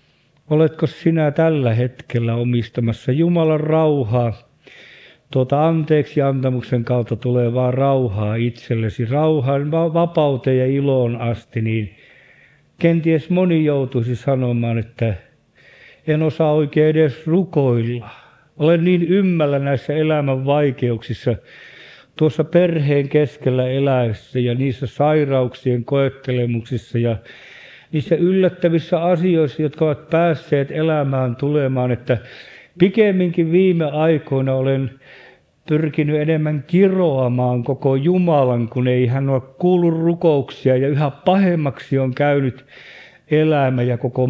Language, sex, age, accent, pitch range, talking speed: Finnish, male, 50-69, native, 125-160 Hz, 105 wpm